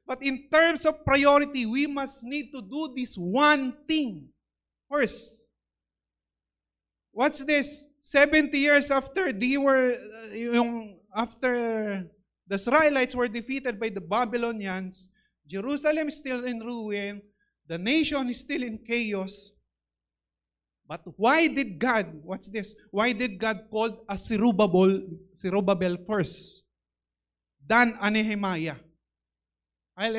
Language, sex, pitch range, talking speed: English, male, 175-245 Hz, 115 wpm